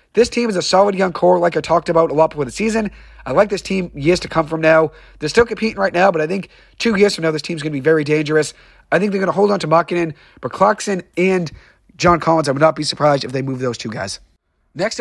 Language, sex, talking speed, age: English, male, 275 wpm, 30-49